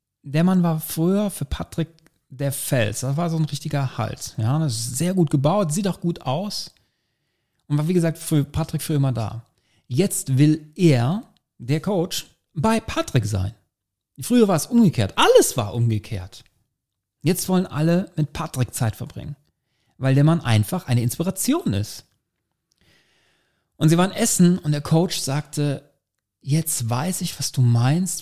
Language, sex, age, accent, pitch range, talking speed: German, male, 40-59, German, 115-160 Hz, 160 wpm